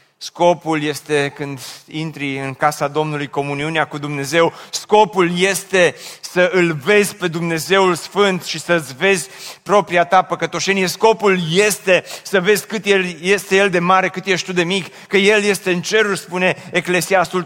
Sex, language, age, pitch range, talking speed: male, Romanian, 30-49, 130-180 Hz, 155 wpm